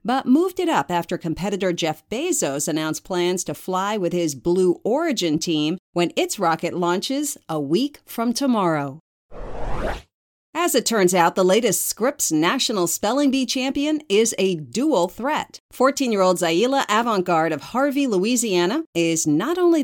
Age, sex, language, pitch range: 40-59, female, English, 170-260 Hz